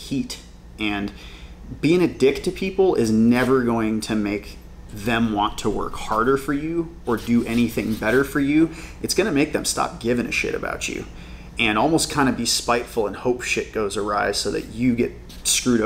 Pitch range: 110-135 Hz